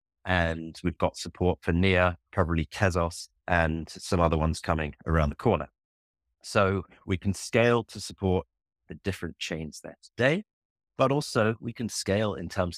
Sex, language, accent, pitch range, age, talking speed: male, English, British, 80-95 Hz, 30-49, 160 wpm